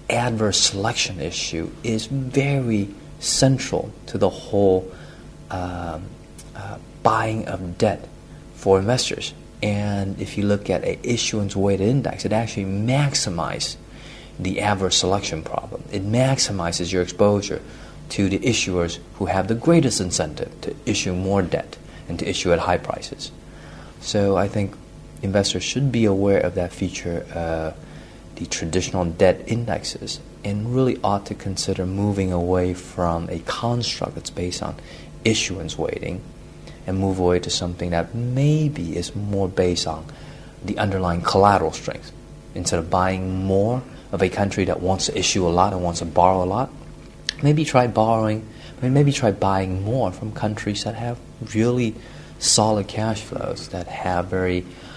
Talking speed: 145 wpm